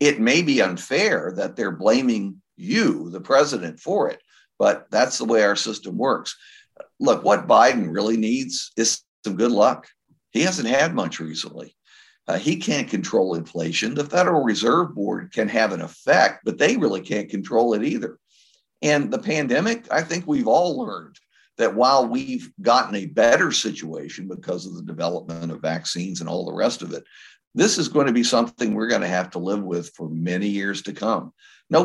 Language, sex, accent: English, male, American